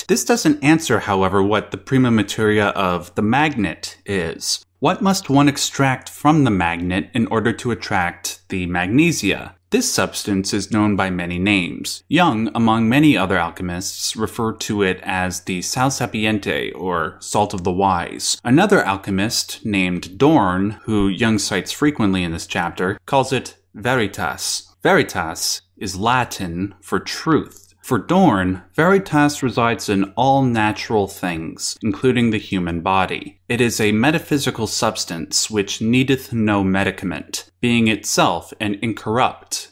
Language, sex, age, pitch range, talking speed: English, male, 30-49, 95-120 Hz, 140 wpm